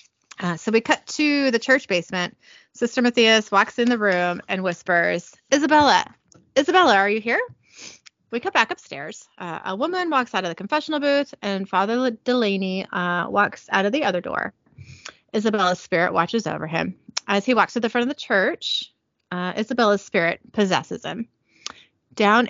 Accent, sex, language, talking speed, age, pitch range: American, female, English, 170 wpm, 30-49, 190-255 Hz